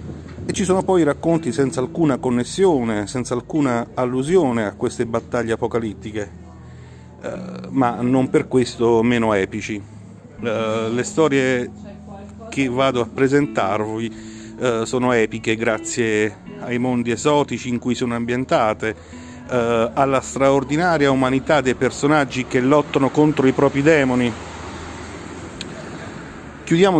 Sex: male